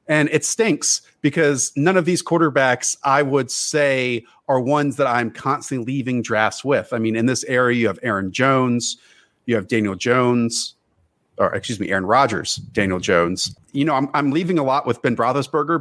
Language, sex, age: English, male, 40-59